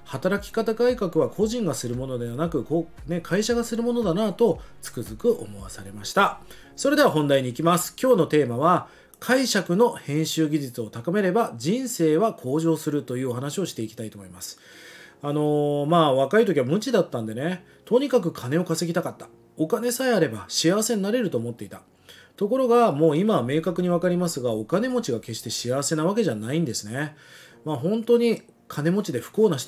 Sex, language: male, Japanese